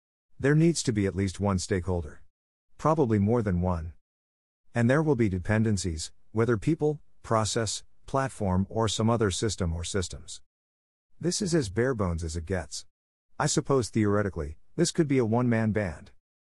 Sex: male